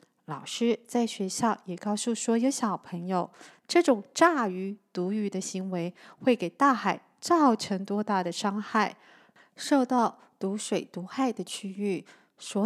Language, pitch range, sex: Chinese, 190-255 Hz, female